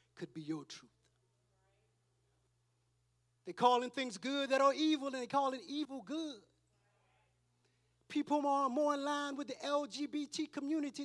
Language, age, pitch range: English, 30-49, 240-320 Hz